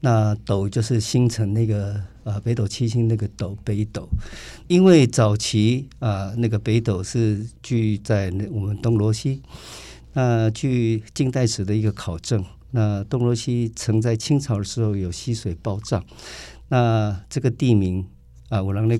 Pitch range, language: 105-125 Hz, Chinese